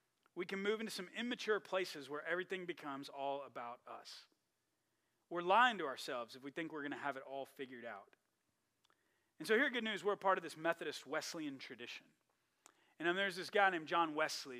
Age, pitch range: 40-59, 155-220 Hz